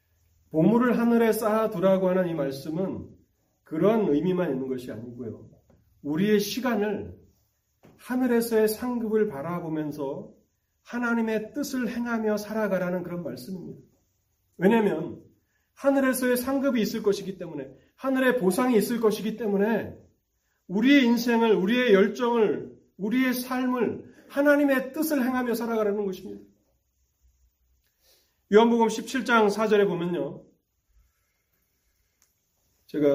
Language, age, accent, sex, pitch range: Korean, 40-59, native, male, 130-215 Hz